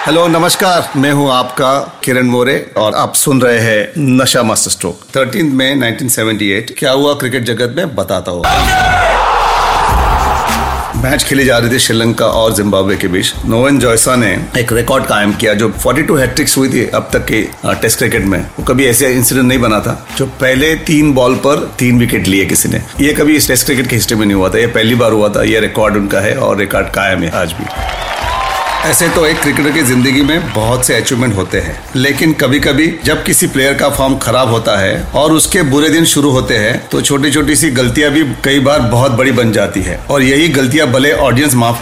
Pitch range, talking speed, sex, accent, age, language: 120-150 Hz, 195 wpm, male, native, 40-59, Hindi